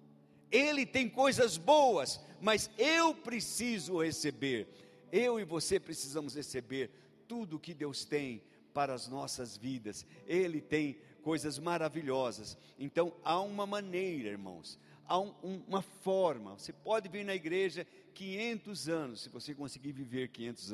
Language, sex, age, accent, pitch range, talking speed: Portuguese, male, 60-79, Brazilian, 140-215 Hz, 135 wpm